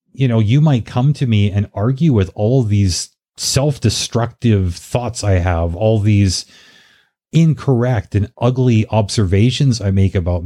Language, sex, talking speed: English, male, 150 wpm